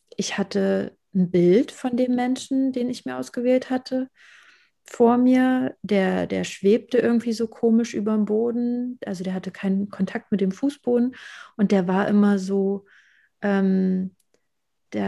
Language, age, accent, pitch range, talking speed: German, 30-49, German, 185-220 Hz, 145 wpm